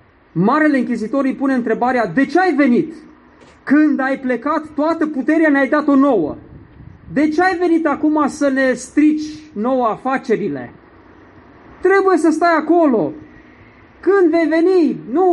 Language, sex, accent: Romanian, male, native